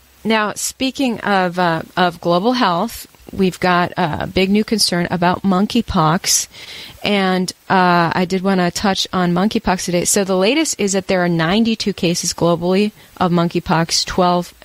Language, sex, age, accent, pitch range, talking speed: English, female, 30-49, American, 175-215 Hz, 155 wpm